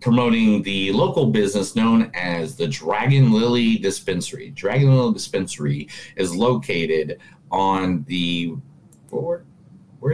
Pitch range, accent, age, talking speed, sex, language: 110-155 Hz, American, 30-49, 105 wpm, male, English